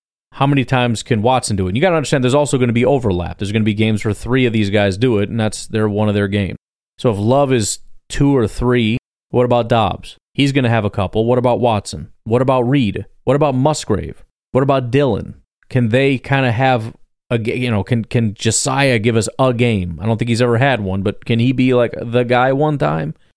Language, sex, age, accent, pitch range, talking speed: English, male, 30-49, American, 110-135 Hz, 245 wpm